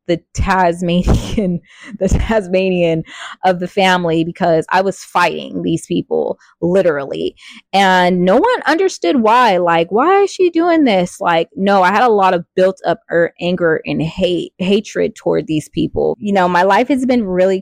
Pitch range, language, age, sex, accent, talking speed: 170-195 Hz, English, 20-39, female, American, 165 wpm